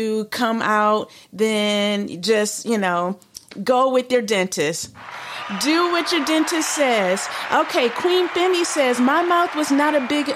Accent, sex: American, female